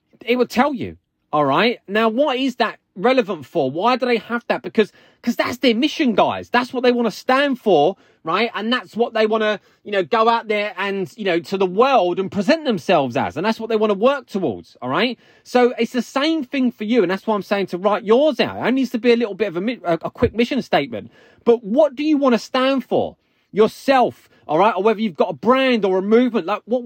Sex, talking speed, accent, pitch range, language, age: male, 255 wpm, British, 195-245 Hz, English, 20-39